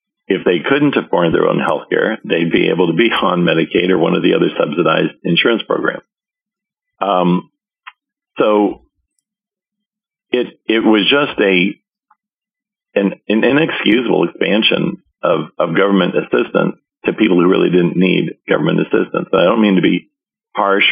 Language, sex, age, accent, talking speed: English, male, 50-69, American, 150 wpm